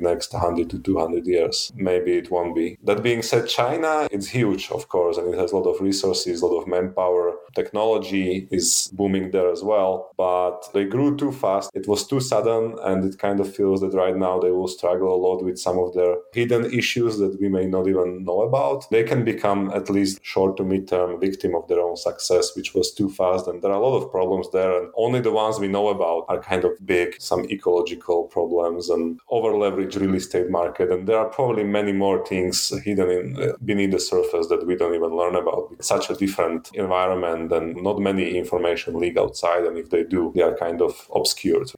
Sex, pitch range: male, 90-120 Hz